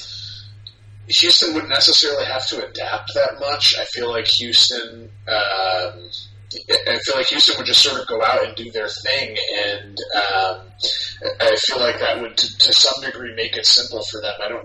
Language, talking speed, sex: English, 185 wpm, male